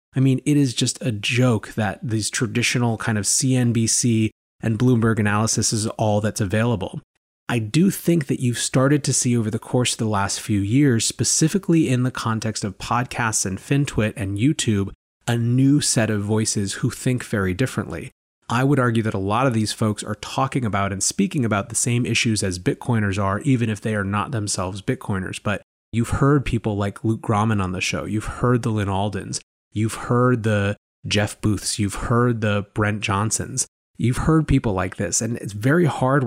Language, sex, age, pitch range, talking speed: English, male, 30-49, 105-130 Hz, 195 wpm